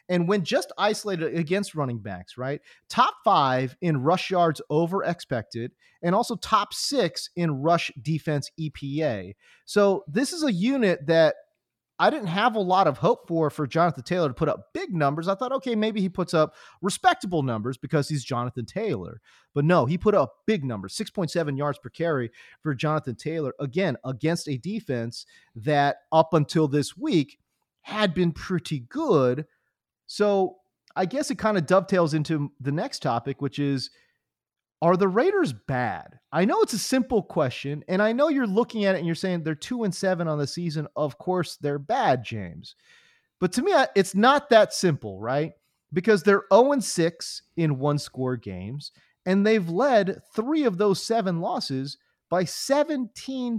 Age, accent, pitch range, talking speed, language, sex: 30-49, American, 145-205 Hz, 170 wpm, English, male